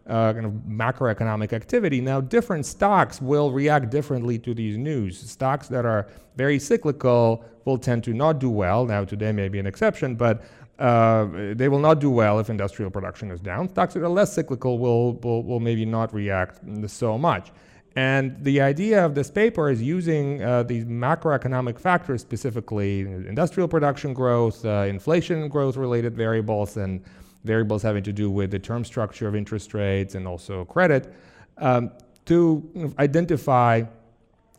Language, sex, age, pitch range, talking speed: English, male, 30-49, 105-130 Hz, 165 wpm